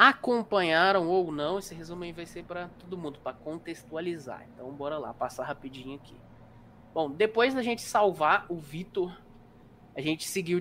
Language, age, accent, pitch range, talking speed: Portuguese, 20-39, Brazilian, 140-190 Hz, 165 wpm